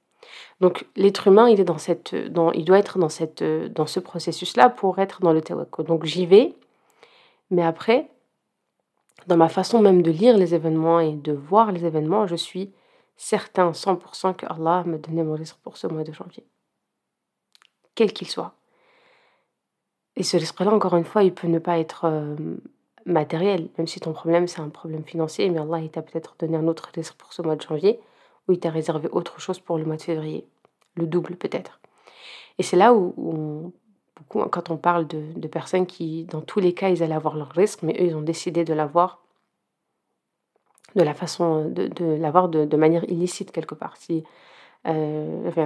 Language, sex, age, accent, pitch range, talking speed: French, female, 30-49, French, 160-185 Hz, 195 wpm